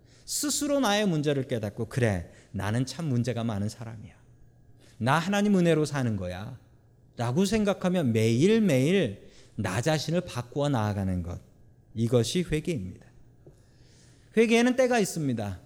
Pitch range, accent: 120-195 Hz, native